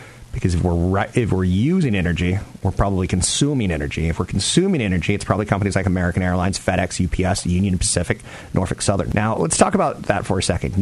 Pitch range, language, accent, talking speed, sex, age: 90-120 Hz, English, American, 200 wpm, male, 40-59